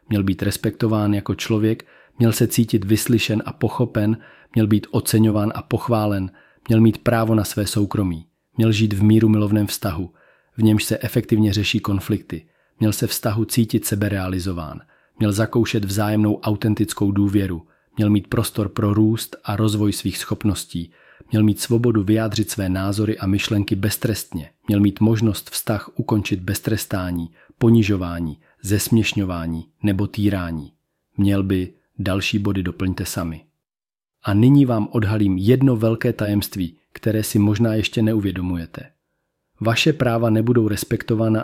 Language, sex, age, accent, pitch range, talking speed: Czech, male, 40-59, native, 100-115 Hz, 135 wpm